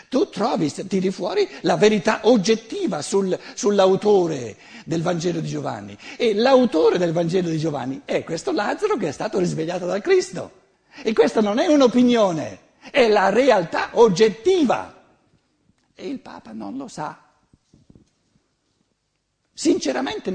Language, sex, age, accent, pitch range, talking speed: Italian, male, 60-79, native, 160-220 Hz, 130 wpm